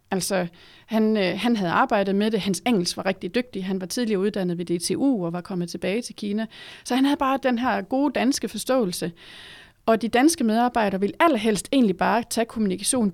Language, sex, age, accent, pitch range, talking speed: Danish, female, 30-49, native, 195-255 Hz, 195 wpm